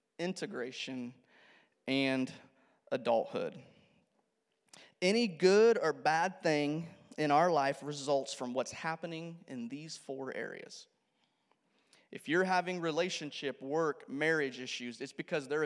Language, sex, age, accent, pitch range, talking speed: English, male, 30-49, American, 130-165 Hz, 110 wpm